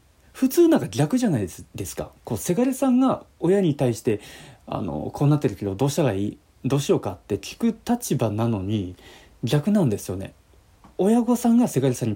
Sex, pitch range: male, 100-150 Hz